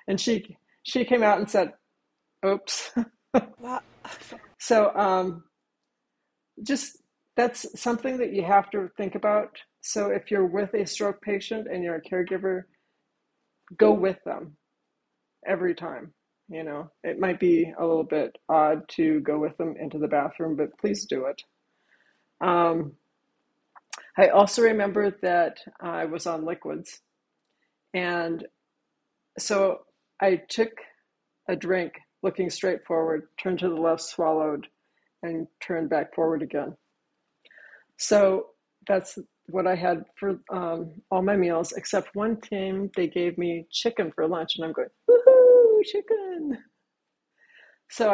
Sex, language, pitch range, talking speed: female, English, 170-210 Hz, 135 wpm